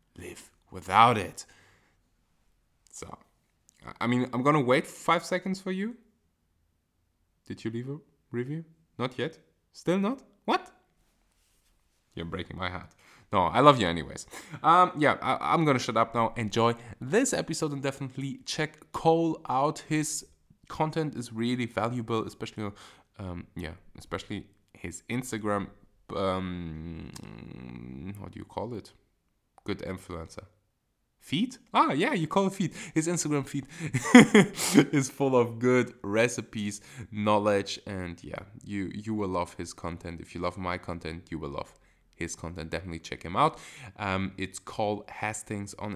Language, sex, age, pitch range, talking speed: English, male, 20-39, 95-155 Hz, 145 wpm